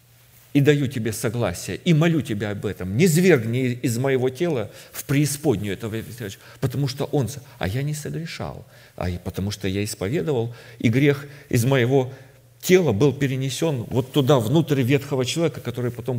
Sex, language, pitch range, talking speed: male, Russian, 110-140 Hz, 165 wpm